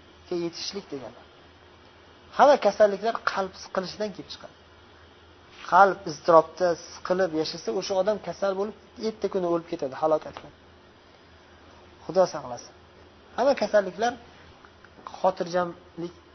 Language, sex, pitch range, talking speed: Bulgarian, male, 125-190 Hz, 95 wpm